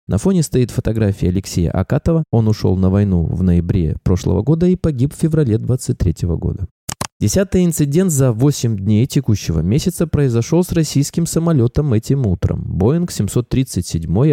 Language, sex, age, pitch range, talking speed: Russian, male, 20-39, 95-150 Hz, 145 wpm